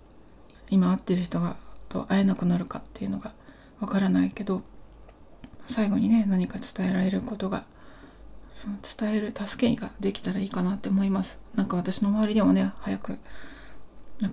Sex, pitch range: female, 180-220 Hz